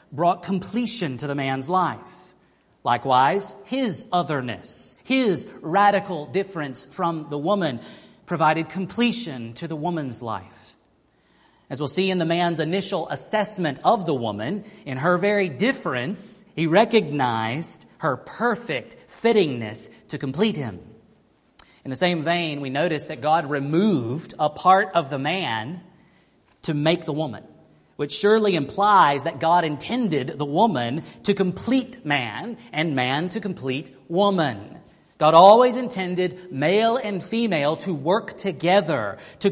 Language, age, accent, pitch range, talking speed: English, 40-59, American, 145-200 Hz, 135 wpm